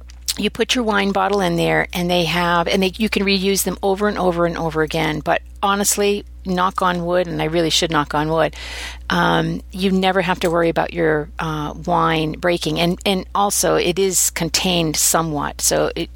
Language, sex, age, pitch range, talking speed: English, female, 50-69, 160-205 Hz, 200 wpm